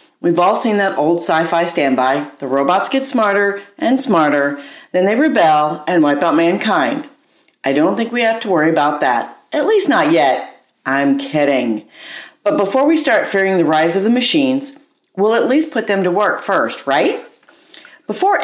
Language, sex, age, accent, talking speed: English, female, 40-59, American, 180 wpm